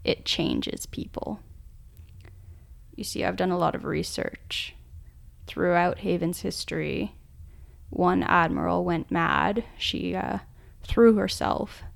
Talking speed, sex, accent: 110 wpm, female, American